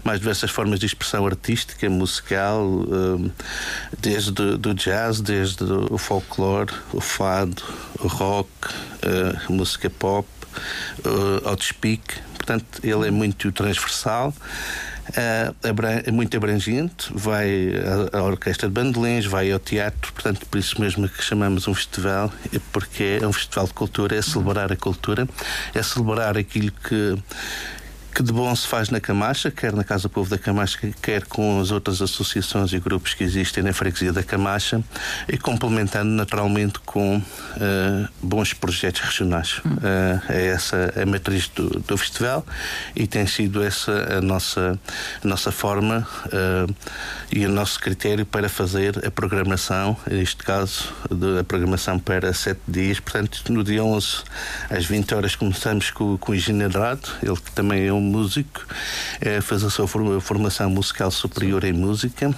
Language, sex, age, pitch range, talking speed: Portuguese, male, 50-69, 95-110 Hz, 145 wpm